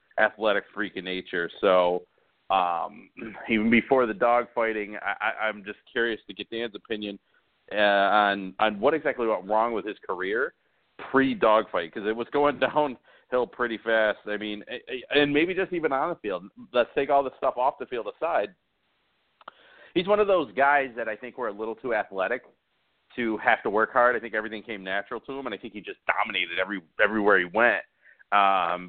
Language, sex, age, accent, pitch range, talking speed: English, male, 40-59, American, 100-120 Hz, 195 wpm